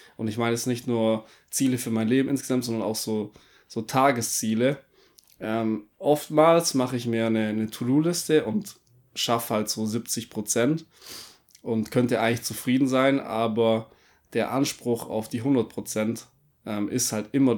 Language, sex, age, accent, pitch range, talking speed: German, male, 20-39, German, 110-120 Hz, 155 wpm